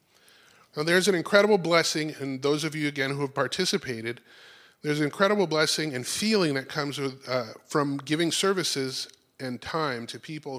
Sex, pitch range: male, 135-170 Hz